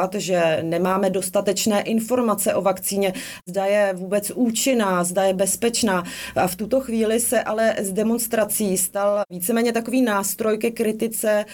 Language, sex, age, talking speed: Czech, female, 30-49, 140 wpm